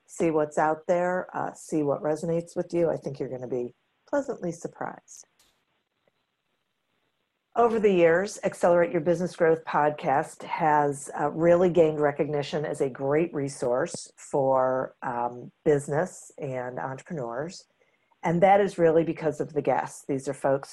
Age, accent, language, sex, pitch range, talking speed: 50-69, American, English, female, 140-175 Hz, 150 wpm